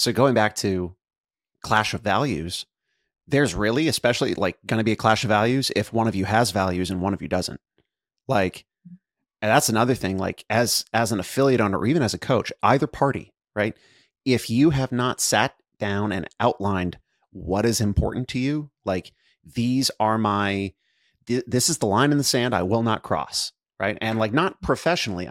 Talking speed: 190 wpm